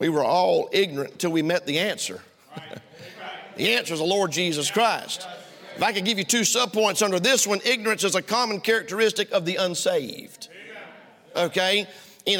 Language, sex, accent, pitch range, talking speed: English, male, American, 195-240 Hz, 175 wpm